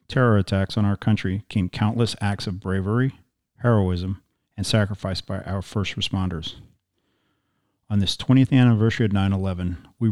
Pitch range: 95-115 Hz